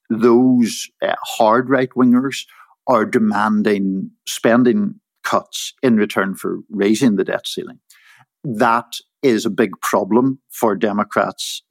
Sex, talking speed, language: male, 115 wpm, English